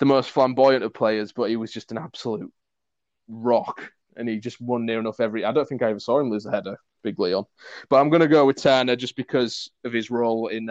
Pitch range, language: 110-145 Hz, English